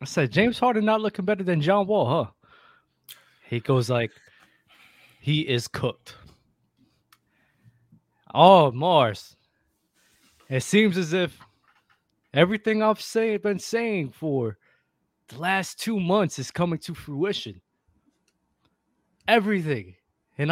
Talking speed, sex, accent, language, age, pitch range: 115 wpm, male, American, English, 20-39, 115-180 Hz